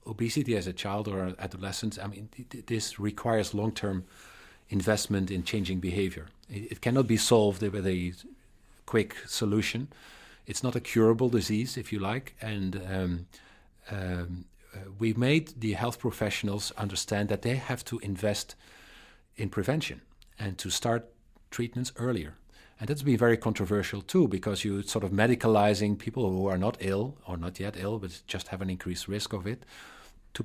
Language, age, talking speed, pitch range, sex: English, 40-59, 160 wpm, 95-115 Hz, male